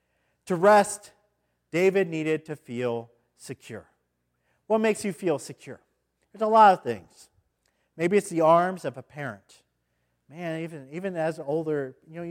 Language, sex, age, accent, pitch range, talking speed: English, male, 50-69, American, 125-185 Hz, 150 wpm